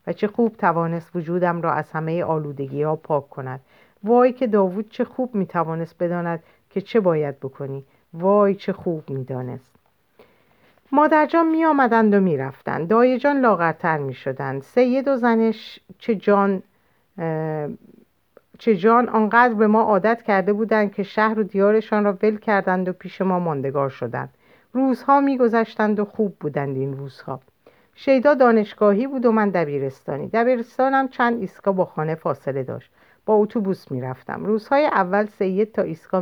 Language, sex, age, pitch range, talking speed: Persian, female, 50-69, 150-225 Hz, 150 wpm